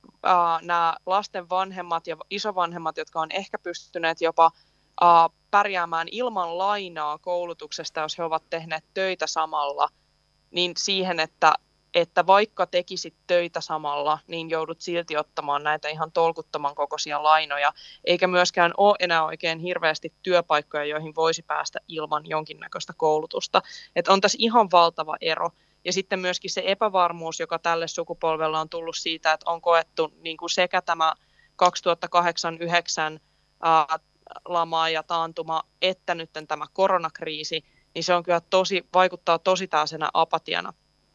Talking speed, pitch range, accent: 135 wpm, 160-180 Hz, native